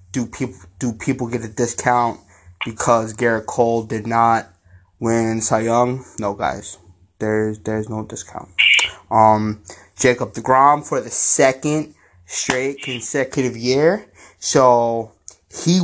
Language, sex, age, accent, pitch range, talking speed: English, male, 20-39, American, 95-130 Hz, 120 wpm